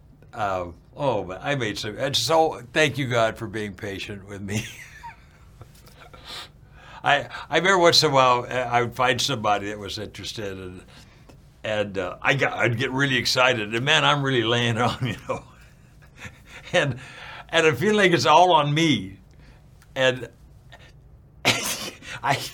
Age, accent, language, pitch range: 60-79, American, English, 105-140 Hz